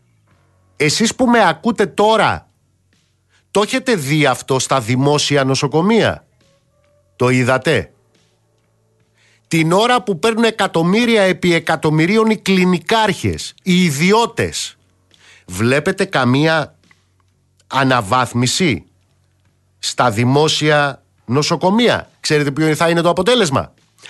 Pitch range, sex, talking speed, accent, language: 125-185 Hz, male, 90 wpm, native, Greek